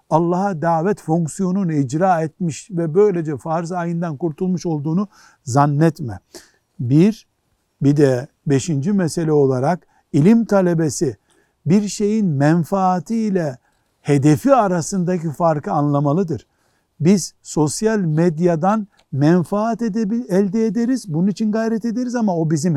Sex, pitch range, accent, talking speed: male, 140-190 Hz, native, 110 wpm